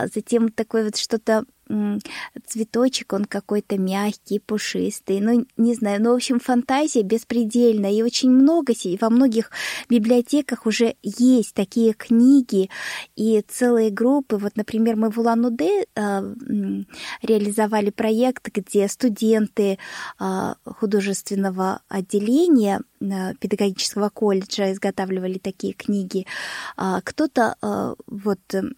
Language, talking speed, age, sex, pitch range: Russian, 100 wpm, 20-39, female, 200-235 Hz